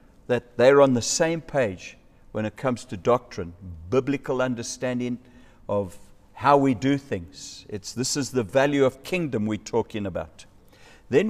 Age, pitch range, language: 60-79, 125-165 Hz, English